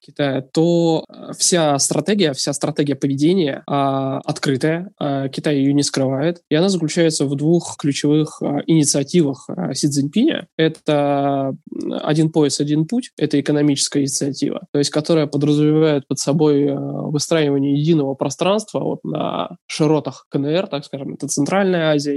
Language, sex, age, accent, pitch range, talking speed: Russian, male, 20-39, native, 140-160 Hz, 140 wpm